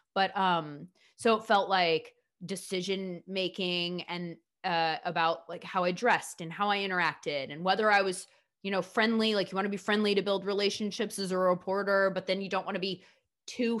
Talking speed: 200 wpm